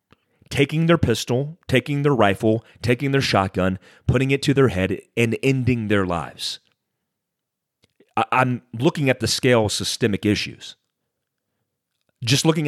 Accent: American